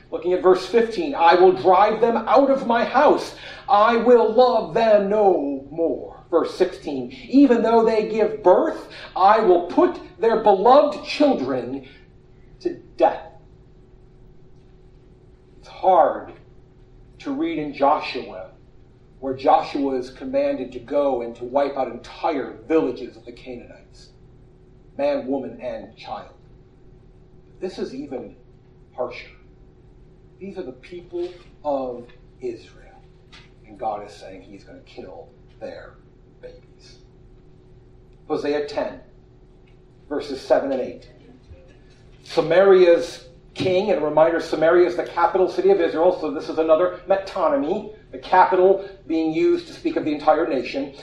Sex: male